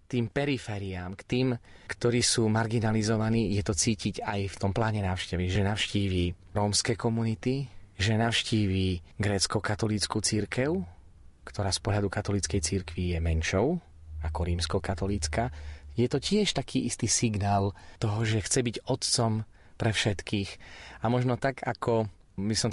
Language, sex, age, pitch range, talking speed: Slovak, male, 30-49, 95-115 Hz, 135 wpm